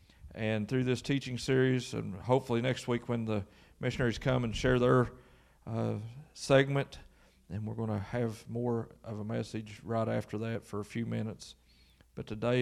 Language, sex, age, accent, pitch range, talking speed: English, male, 40-59, American, 120-160 Hz, 170 wpm